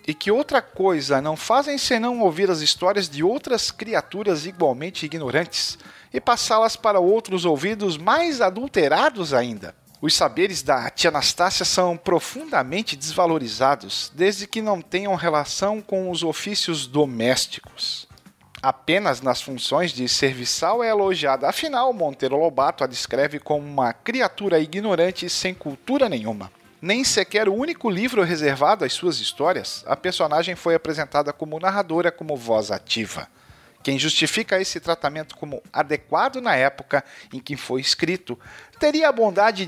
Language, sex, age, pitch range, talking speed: Portuguese, male, 40-59, 145-205 Hz, 140 wpm